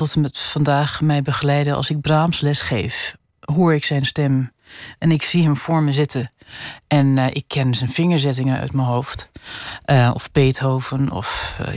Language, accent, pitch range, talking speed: Dutch, Dutch, 145-180 Hz, 180 wpm